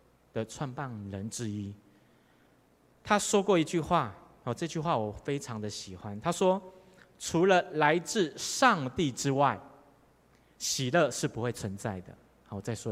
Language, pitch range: Chinese, 125-205 Hz